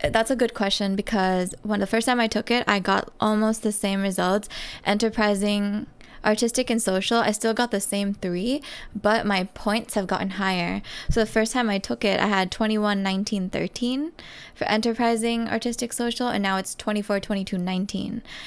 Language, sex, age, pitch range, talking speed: English, female, 20-39, 195-230 Hz, 180 wpm